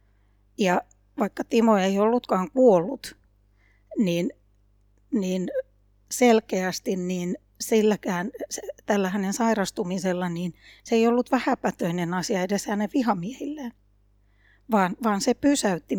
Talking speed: 105 wpm